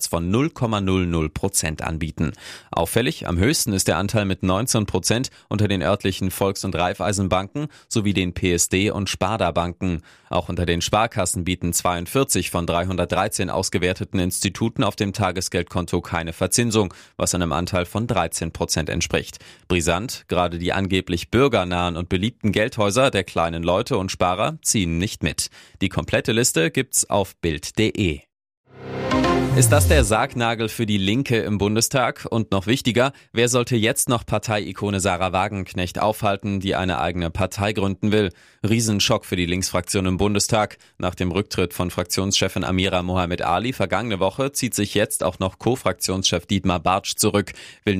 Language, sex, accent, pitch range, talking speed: German, male, German, 90-110 Hz, 145 wpm